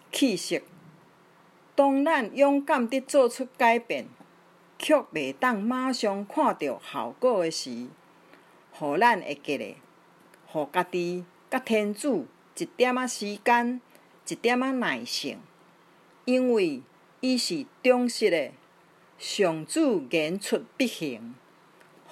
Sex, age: female, 50-69